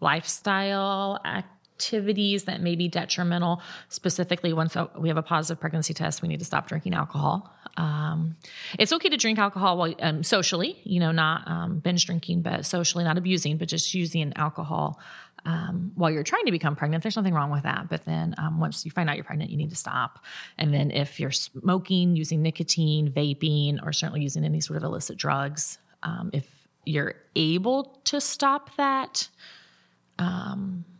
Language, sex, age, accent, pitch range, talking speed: English, female, 30-49, American, 155-180 Hz, 180 wpm